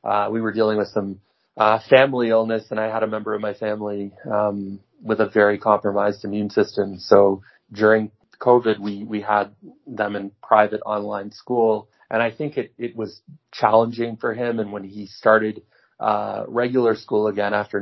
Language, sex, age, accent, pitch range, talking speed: English, male, 30-49, American, 105-115 Hz, 180 wpm